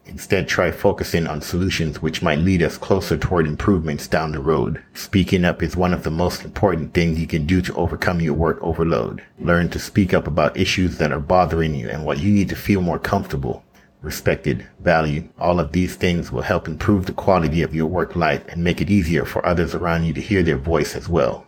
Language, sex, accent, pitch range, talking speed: English, male, American, 80-90 Hz, 220 wpm